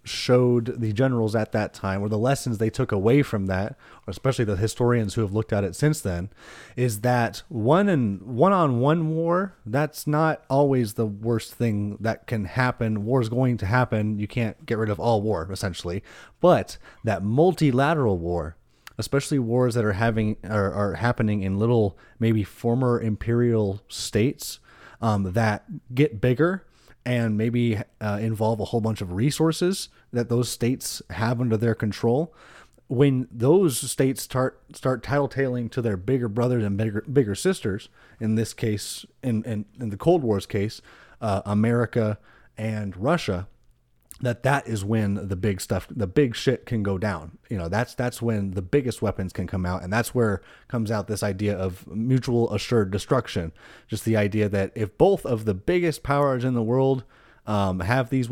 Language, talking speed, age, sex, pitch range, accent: English, 175 wpm, 30-49, male, 105-130 Hz, American